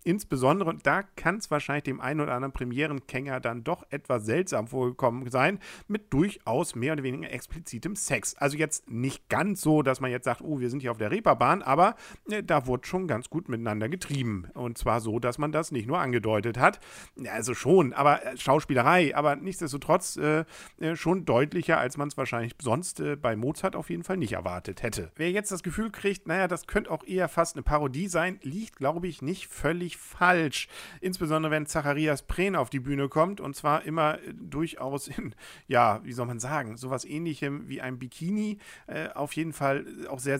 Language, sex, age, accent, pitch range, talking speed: German, male, 50-69, German, 130-165 Hz, 195 wpm